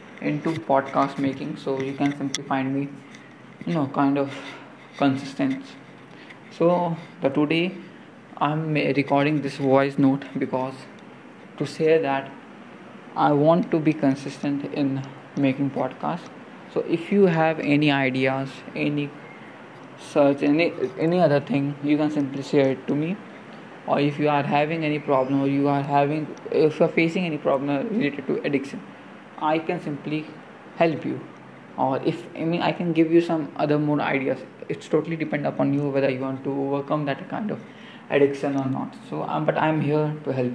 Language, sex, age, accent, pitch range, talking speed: English, male, 20-39, Indian, 135-155 Hz, 165 wpm